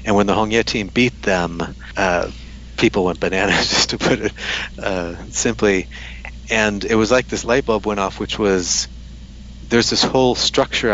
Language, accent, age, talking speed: English, American, 30-49, 175 wpm